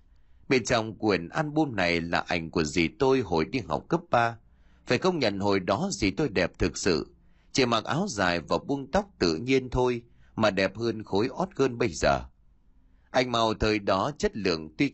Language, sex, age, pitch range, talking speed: Vietnamese, male, 30-49, 85-140 Hz, 200 wpm